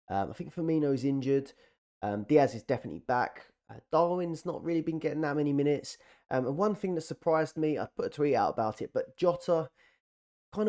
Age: 20-39